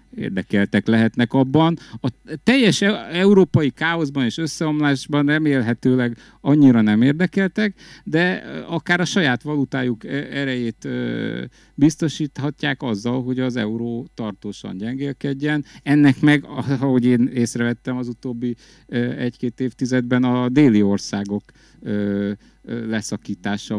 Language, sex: Hungarian, male